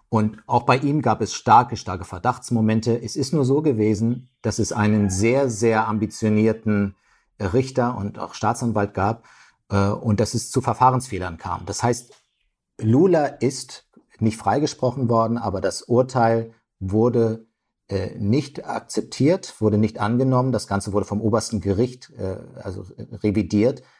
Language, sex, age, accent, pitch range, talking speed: German, male, 50-69, German, 100-120 Hz, 140 wpm